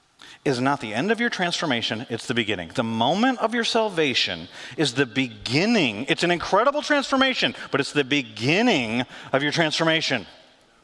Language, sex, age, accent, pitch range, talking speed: English, male, 40-59, American, 135-220 Hz, 160 wpm